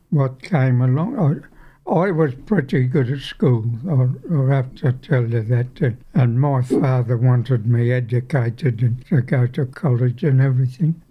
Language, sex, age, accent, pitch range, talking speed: English, male, 60-79, American, 125-145 Hz, 165 wpm